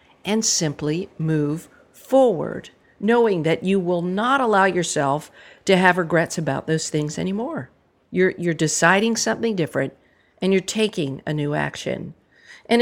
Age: 50-69